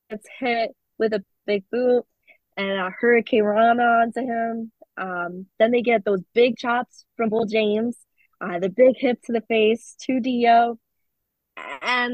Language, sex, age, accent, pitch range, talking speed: English, female, 20-39, American, 190-250 Hz, 160 wpm